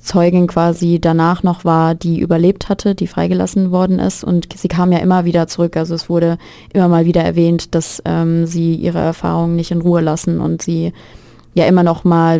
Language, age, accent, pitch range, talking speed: English, 20-39, German, 165-185 Hz, 200 wpm